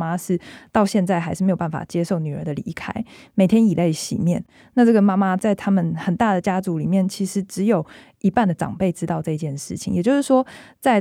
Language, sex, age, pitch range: Chinese, female, 20-39, 175-215 Hz